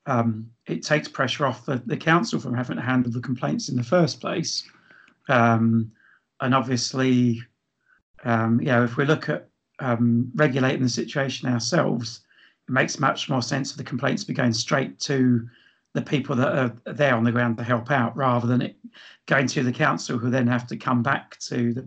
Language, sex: English, male